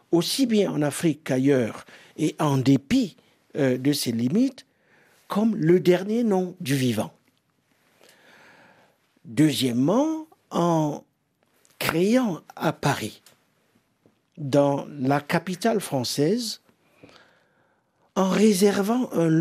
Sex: male